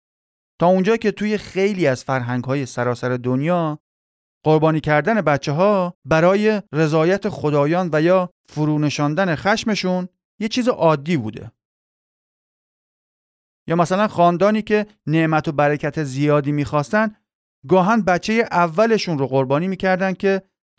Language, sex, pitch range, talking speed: Persian, male, 140-200 Hz, 115 wpm